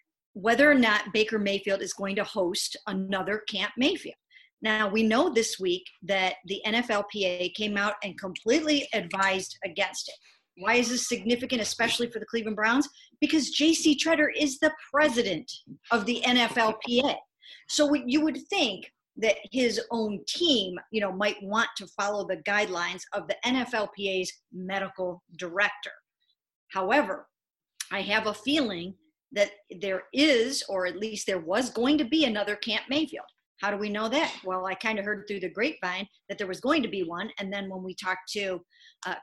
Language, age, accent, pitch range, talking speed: English, 50-69, American, 195-245 Hz, 170 wpm